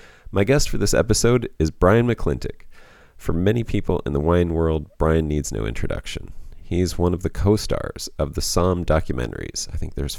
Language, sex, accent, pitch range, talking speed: English, male, American, 75-100 Hz, 185 wpm